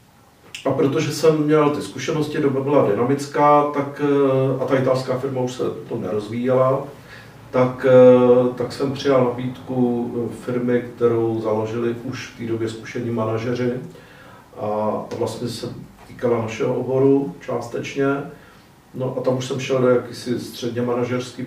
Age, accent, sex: 50-69, native, male